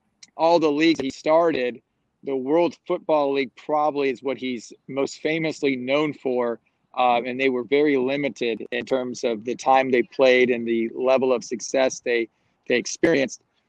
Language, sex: English, male